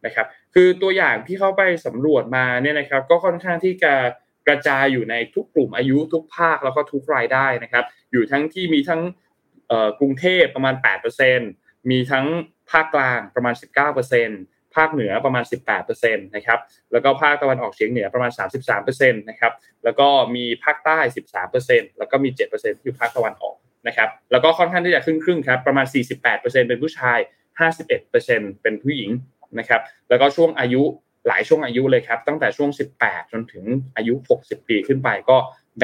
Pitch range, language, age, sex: 125-165 Hz, Thai, 20-39, male